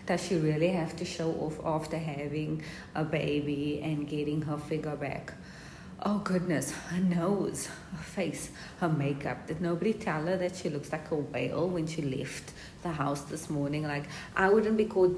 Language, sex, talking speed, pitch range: English, female, 180 wpm, 150-185 Hz